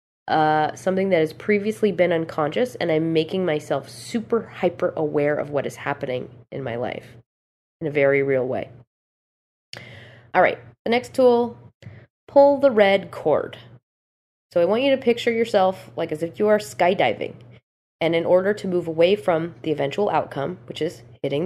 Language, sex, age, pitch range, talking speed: English, female, 20-39, 145-190 Hz, 170 wpm